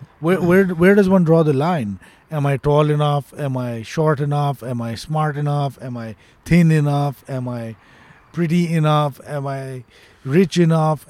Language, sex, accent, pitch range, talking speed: Hindi, male, native, 135-170 Hz, 175 wpm